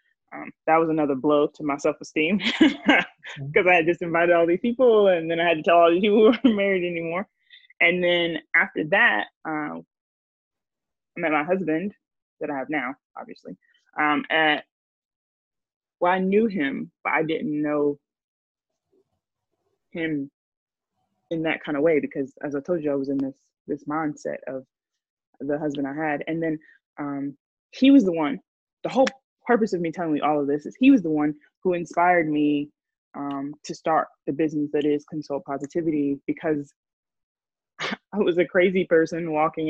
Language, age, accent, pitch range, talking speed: English, 20-39, American, 150-200 Hz, 175 wpm